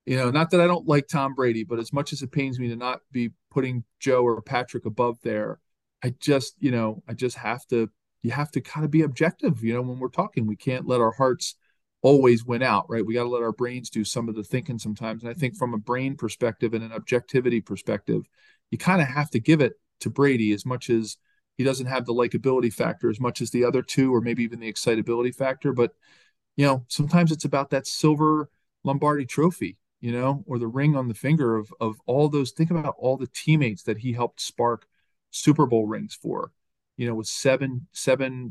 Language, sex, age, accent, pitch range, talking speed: English, male, 40-59, American, 115-140 Hz, 230 wpm